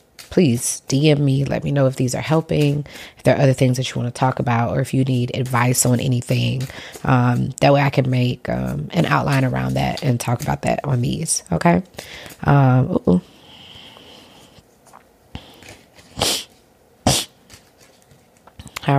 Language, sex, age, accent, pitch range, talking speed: English, female, 20-39, American, 125-150 Hz, 150 wpm